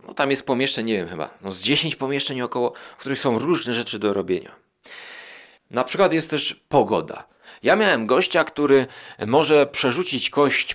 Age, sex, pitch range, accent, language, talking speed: 30-49, male, 120-165 Hz, native, Polish, 160 wpm